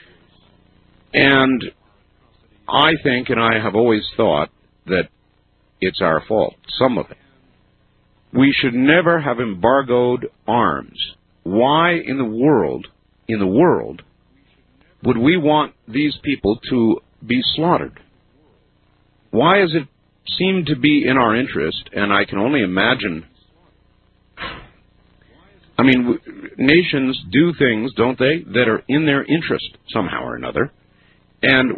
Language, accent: English, American